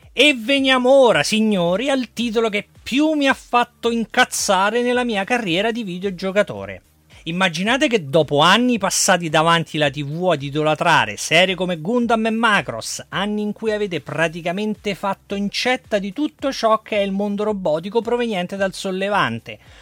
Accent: native